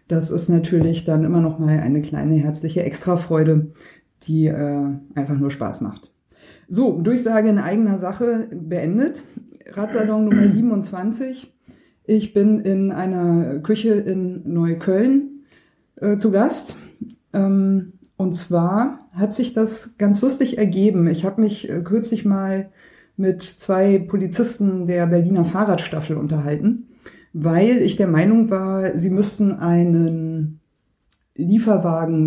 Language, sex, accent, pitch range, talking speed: German, female, German, 165-210 Hz, 125 wpm